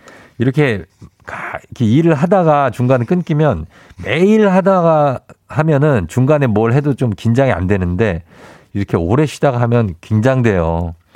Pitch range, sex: 100-140 Hz, male